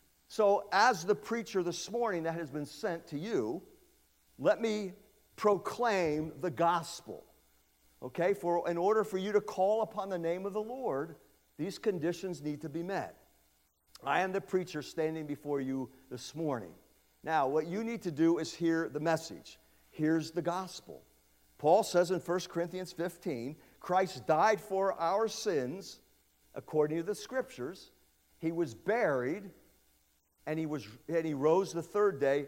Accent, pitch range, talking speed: American, 150-190 Hz, 160 wpm